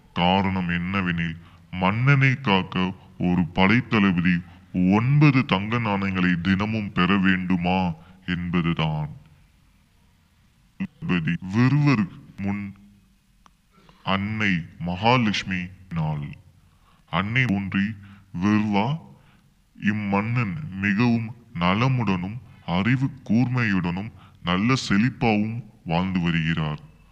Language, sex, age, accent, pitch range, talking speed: Tamil, female, 20-39, native, 90-110 Hz, 55 wpm